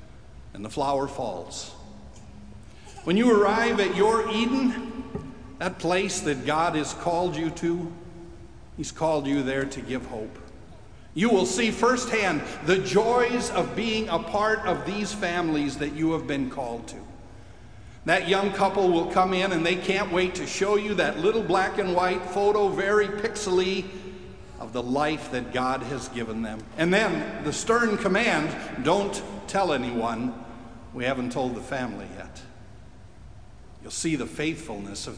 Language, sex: English, male